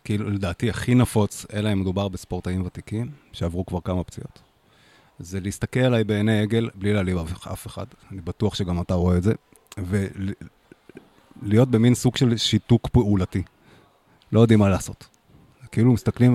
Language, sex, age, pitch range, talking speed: Hebrew, male, 30-49, 95-115 Hz, 155 wpm